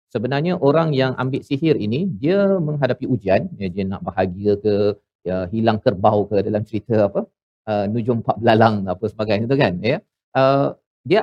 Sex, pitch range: male, 110-145 Hz